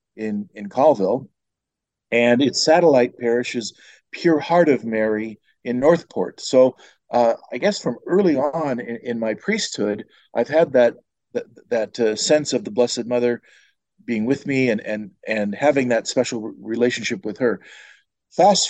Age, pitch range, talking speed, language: 50-69, 110-135 Hz, 155 wpm, English